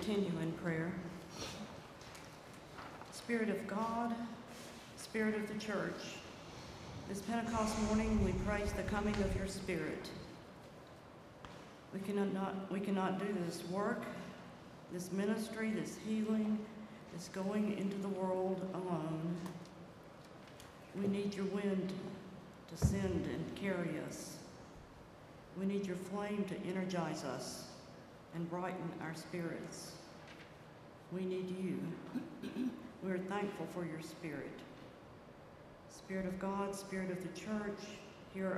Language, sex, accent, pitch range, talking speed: English, female, American, 175-205 Hz, 115 wpm